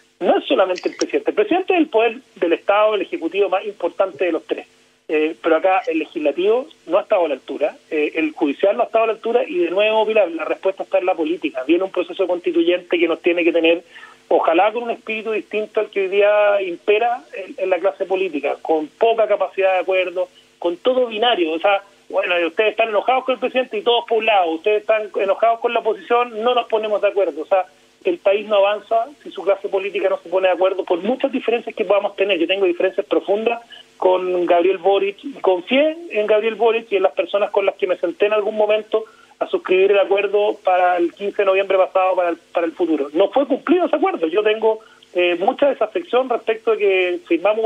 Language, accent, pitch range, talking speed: Spanish, Argentinian, 185-230 Hz, 225 wpm